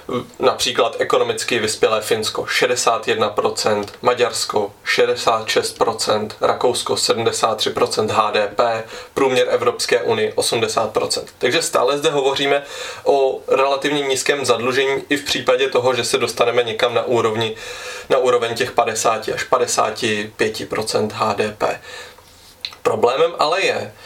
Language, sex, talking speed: Czech, male, 105 wpm